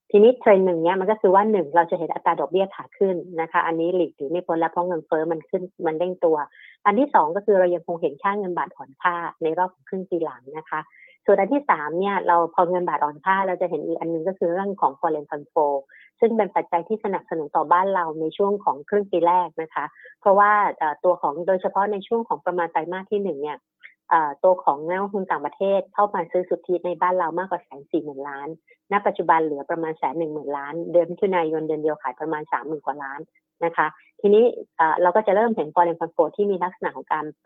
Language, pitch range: Thai, 160-195 Hz